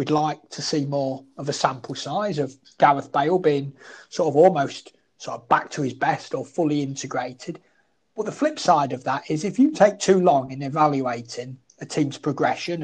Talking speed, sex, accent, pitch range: 195 wpm, male, British, 140-185 Hz